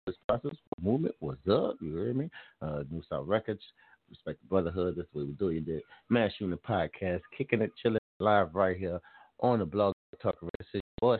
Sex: male